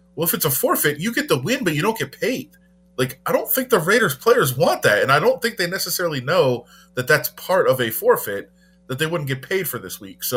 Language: English